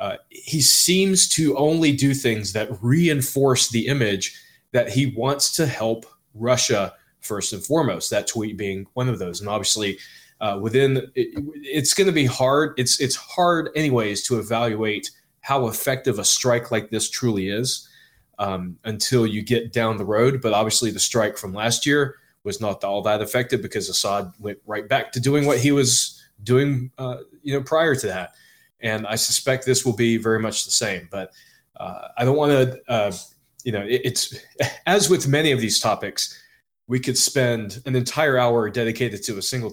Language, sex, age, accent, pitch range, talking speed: English, male, 20-39, American, 110-140 Hz, 185 wpm